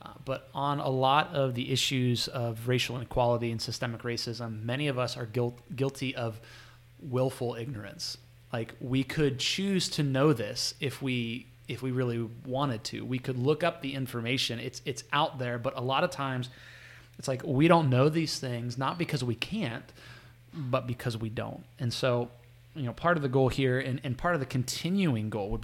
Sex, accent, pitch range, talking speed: male, American, 120-140 Hz, 195 wpm